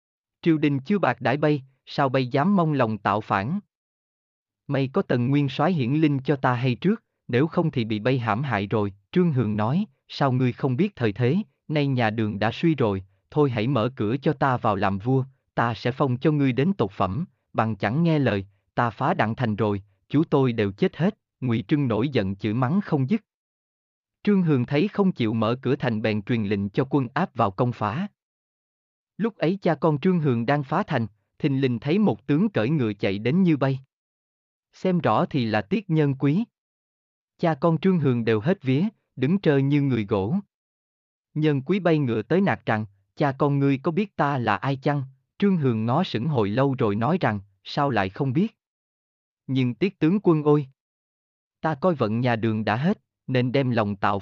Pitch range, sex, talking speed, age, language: 110-155 Hz, male, 205 wpm, 20-39, Vietnamese